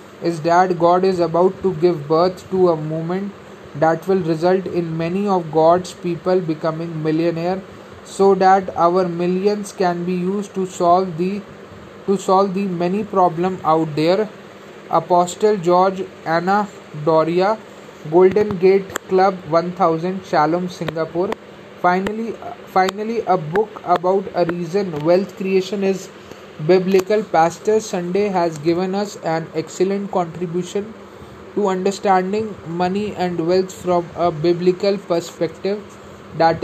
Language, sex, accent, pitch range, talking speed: Hindi, male, native, 170-190 Hz, 125 wpm